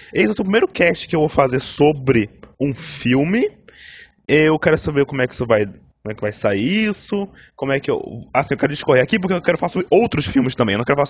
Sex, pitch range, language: male, 125-165 Hz, Portuguese